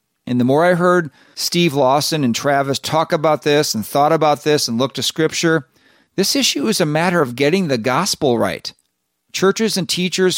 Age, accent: 40-59, American